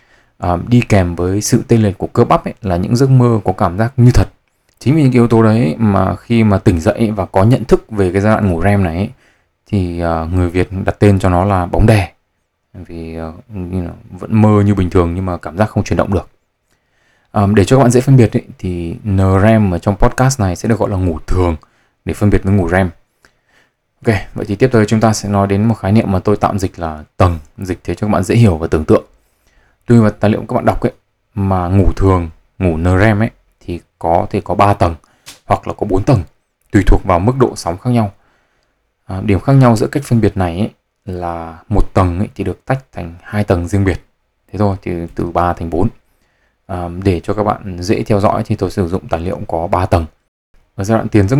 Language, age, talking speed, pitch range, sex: Vietnamese, 20-39, 245 wpm, 90-110 Hz, male